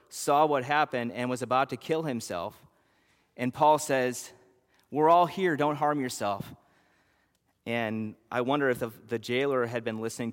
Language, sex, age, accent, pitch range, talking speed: English, male, 30-49, American, 110-140 Hz, 165 wpm